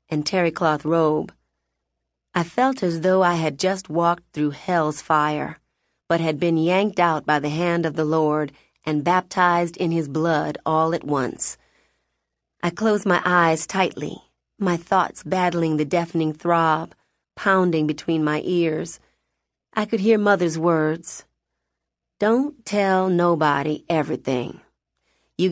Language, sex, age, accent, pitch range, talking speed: English, female, 40-59, American, 155-185 Hz, 135 wpm